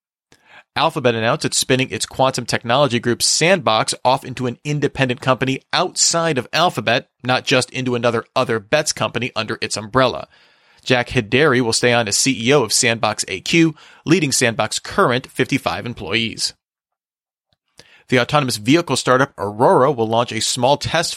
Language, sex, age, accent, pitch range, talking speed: English, male, 40-59, American, 120-145 Hz, 145 wpm